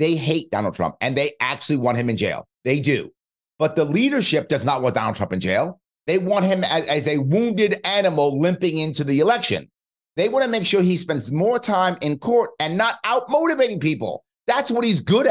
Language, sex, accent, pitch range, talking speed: English, male, American, 145-205 Hz, 215 wpm